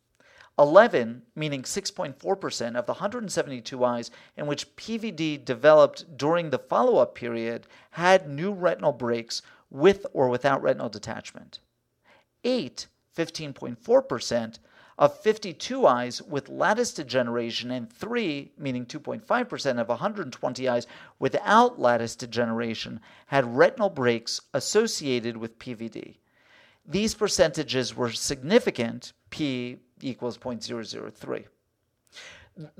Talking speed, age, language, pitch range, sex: 100 wpm, 50-69, English, 125-195 Hz, male